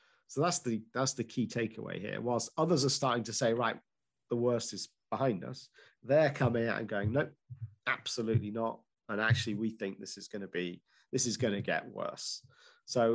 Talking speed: 200 wpm